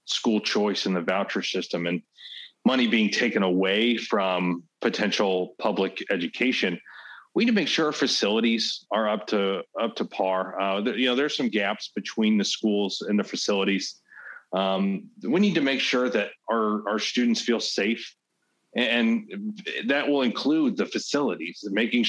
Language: English